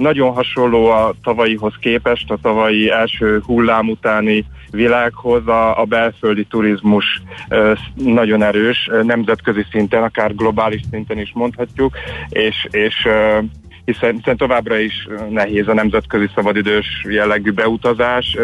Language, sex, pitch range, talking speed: Hungarian, male, 105-115 Hz, 115 wpm